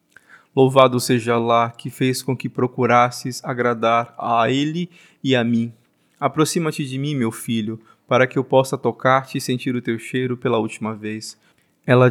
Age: 20-39